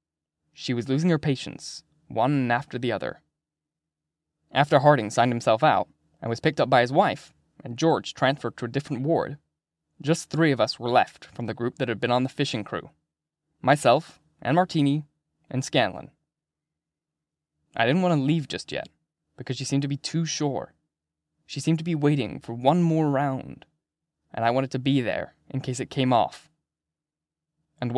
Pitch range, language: 120-155 Hz, English